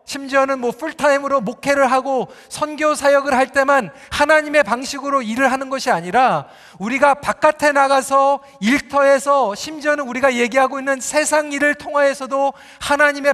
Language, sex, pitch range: Korean, male, 255-290 Hz